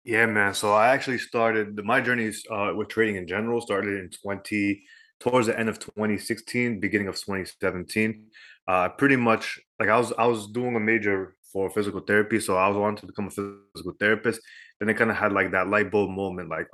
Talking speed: 210 wpm